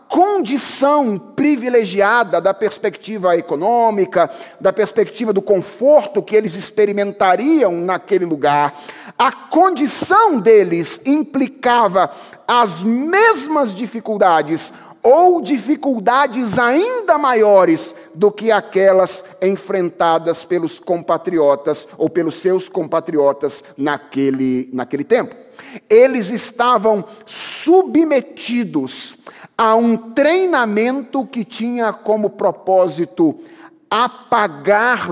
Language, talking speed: Portuguese, 85 wpm